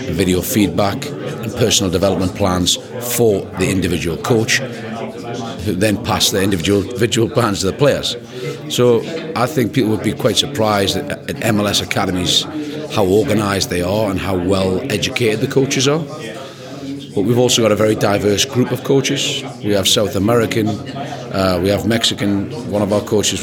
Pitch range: 95-125 Hz